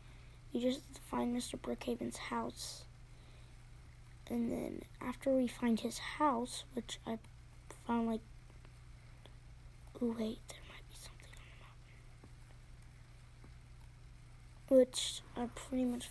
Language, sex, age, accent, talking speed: English, female, 20-39, American, 110 wpm